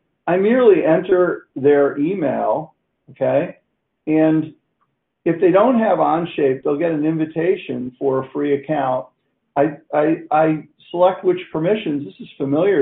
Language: English